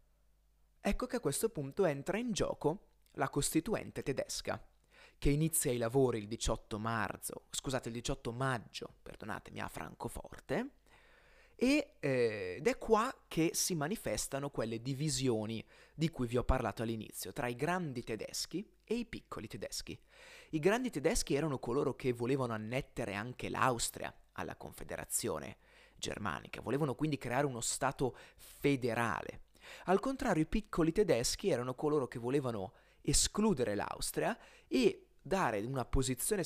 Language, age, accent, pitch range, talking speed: Italian, 30-49, native, 120-175 Hz, 135 wpm